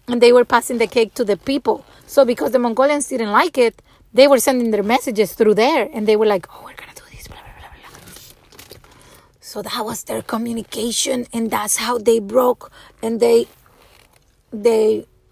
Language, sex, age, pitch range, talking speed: English, female, 30-49, 215-250 Hz, 175 wpm